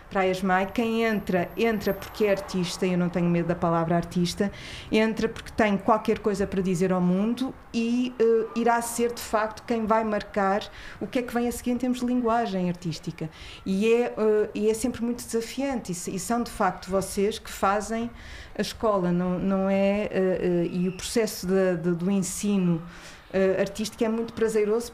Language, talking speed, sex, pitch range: Portuguese, 190 wpm, female, 180-220 Hz